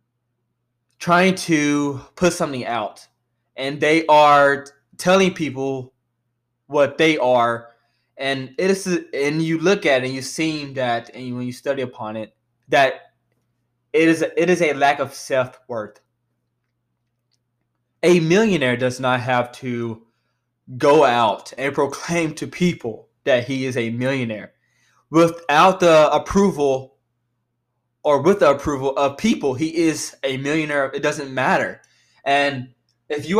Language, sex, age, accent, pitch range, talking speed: English, male, 20-39, American, 125-165 Hz, 140 wpm